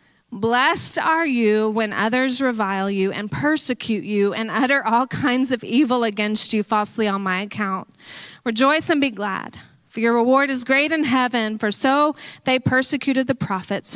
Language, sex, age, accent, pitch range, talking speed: English, female, 30-49, American, 205-260 Hz, 170 wpm